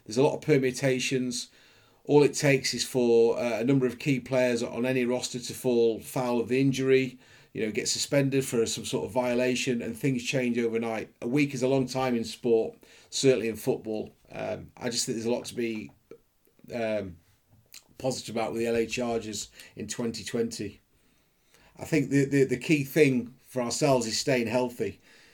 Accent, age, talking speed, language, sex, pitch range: British, 30-49, 185 wpm, English, male, 115-135 Hz